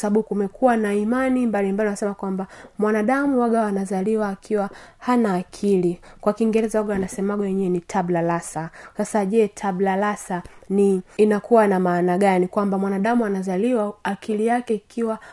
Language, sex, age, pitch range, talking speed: Swahili, female, 20-39, 195-235 Hz, 140 wpm